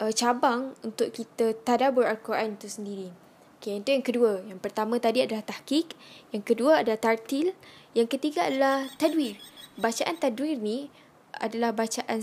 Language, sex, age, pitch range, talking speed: Malay, female, 10-29, 215-255 Hz, 140 wpm